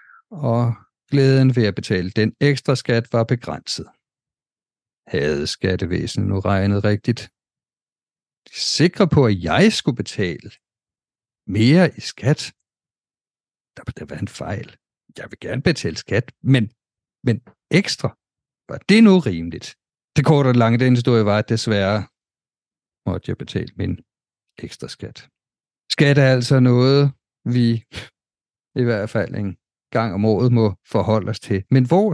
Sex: male